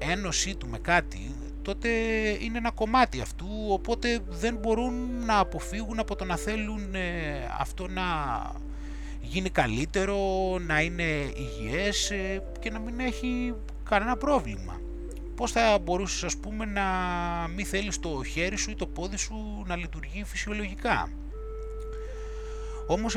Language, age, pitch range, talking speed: Greek, 20-39, 145-215 Hz, 130 wpm